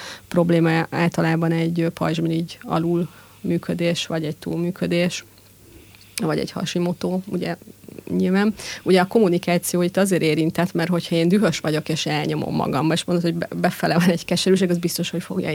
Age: 30-49